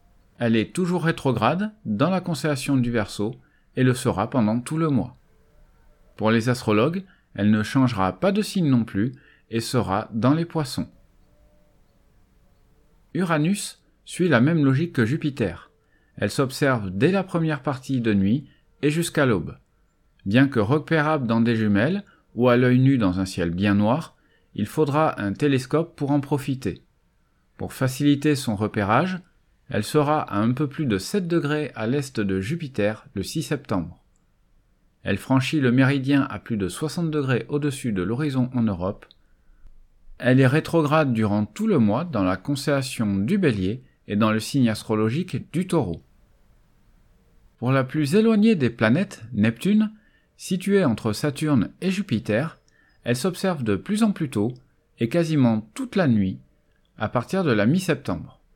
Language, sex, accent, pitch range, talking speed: French, male, French, 110-155 Hz, 160 wpm